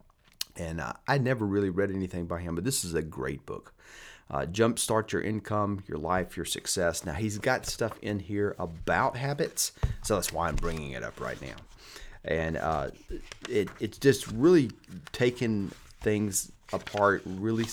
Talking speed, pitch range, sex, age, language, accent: 170 wpm, 85-115 Hz, male, 30-49, English, American